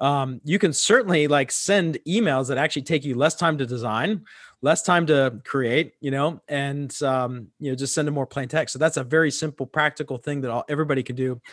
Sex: male